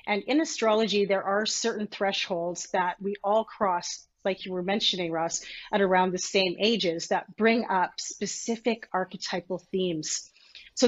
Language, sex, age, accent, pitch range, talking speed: English, female, 30-49, American, 180-215 Hz, 155 wpm